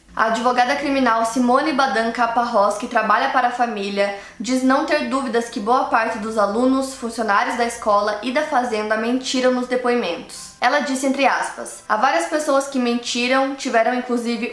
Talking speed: 160 wpm